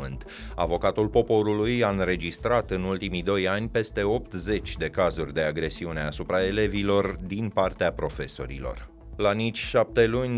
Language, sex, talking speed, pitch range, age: Romanian, male, 135 wpm, 90-115 Hz, 30-49